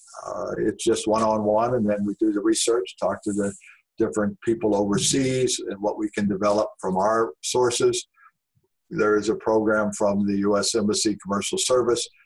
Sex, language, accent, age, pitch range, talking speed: male, English, American, 50-69, 100-125 Hz, 165 wpm